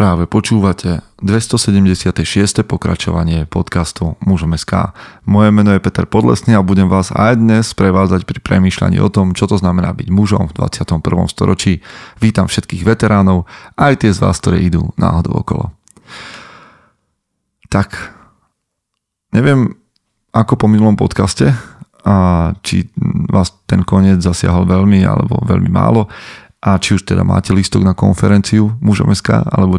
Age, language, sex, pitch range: 30-49, Slovak, male, 90-105 Hz